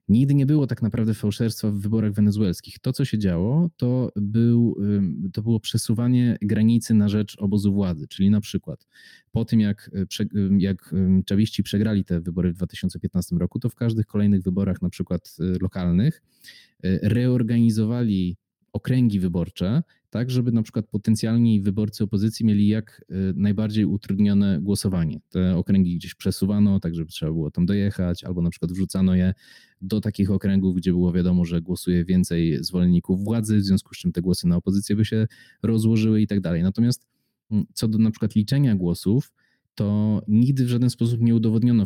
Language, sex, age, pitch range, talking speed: Polish, male, 20-39, 90-110 Hz, 160 wpm